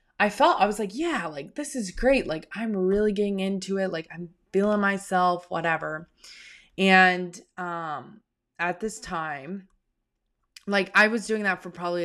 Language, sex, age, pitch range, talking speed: English, female, 20-39, 160-190 Hz, 165 wpm